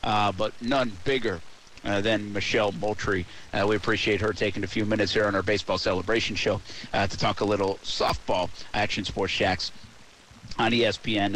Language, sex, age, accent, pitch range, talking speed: English, male, 50-69, American, 105-135 Hz, 175 wpm